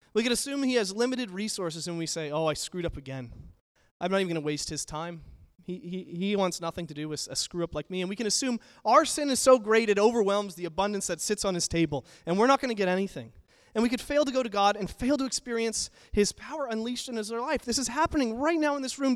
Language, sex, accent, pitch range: English, male, American, 160-240 Hz